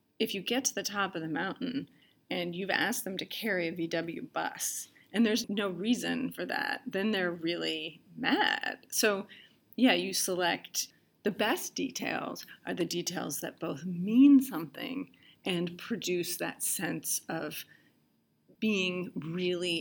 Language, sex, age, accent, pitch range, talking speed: English, female, 30-49, American, 175-225 Hz, 150 wpm